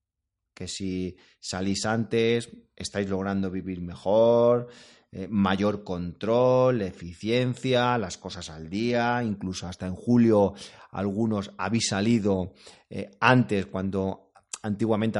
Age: 30-49